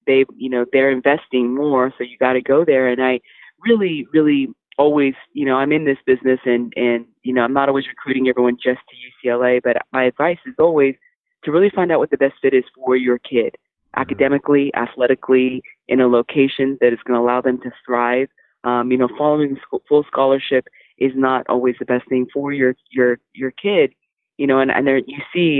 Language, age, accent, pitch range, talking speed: English, 20-39, American, 125-145 Hz, 210 wpm